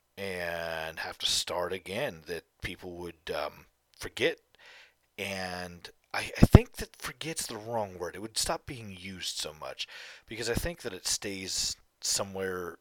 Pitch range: 90-150 Hz